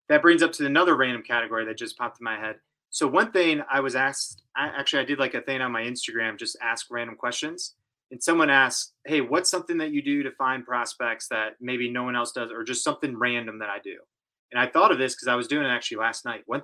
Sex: male